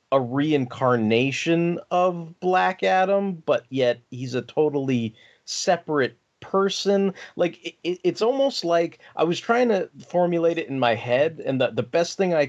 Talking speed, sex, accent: 160 wpm, male, American